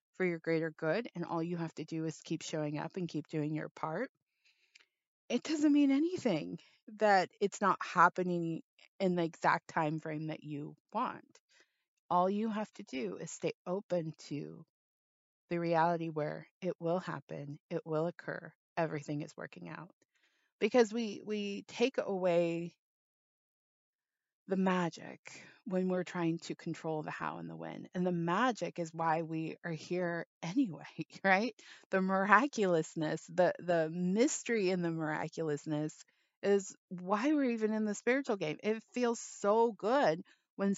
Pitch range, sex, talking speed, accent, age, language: 160-200 Hz, female, 155 wpm, American, 30-49, English